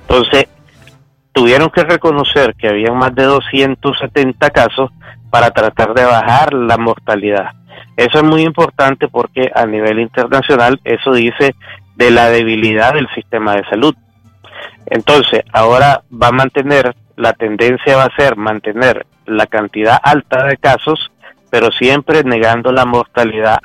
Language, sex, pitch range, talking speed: Spanish, male, 115-140 Hz, 135 wpm